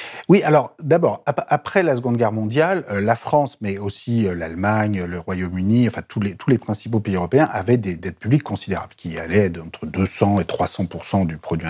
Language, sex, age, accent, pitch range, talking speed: French, male, 40-59, French, 95-130 Hz, 185 wpm